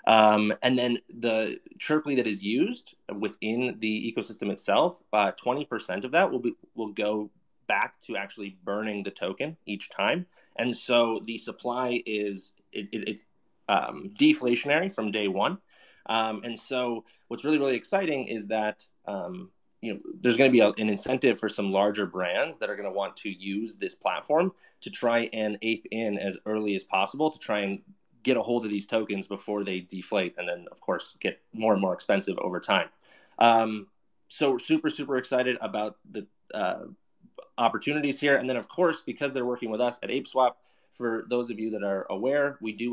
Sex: male